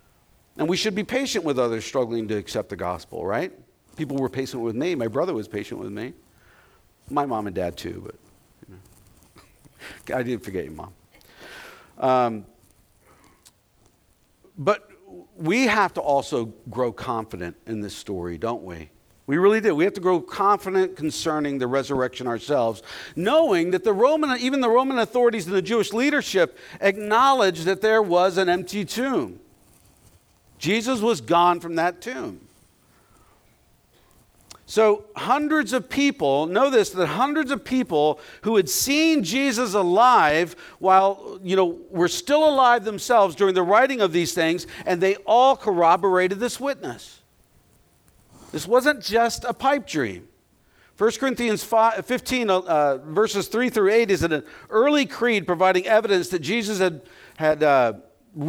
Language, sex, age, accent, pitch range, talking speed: English, male, 50-69, American, 140-235 Hz, 150 wpm